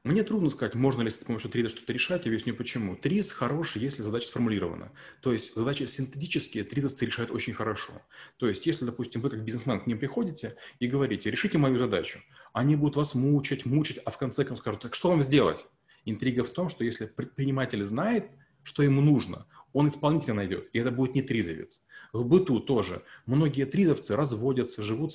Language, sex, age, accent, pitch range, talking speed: Russian, male, 30-49, native, 115-145 Hz, 190 wpm